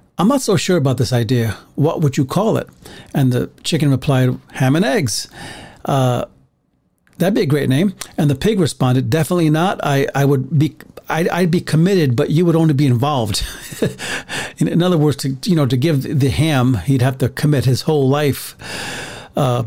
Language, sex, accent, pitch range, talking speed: English, male, American, 130-165 Hz, 195 wpm